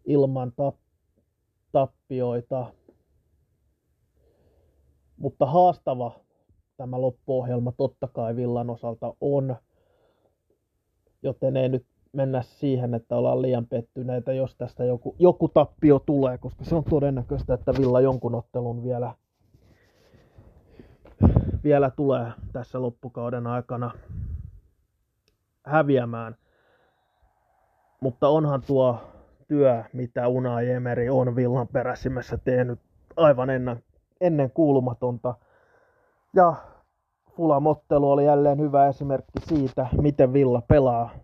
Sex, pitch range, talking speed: male, 120-140 Hz, 95 wpm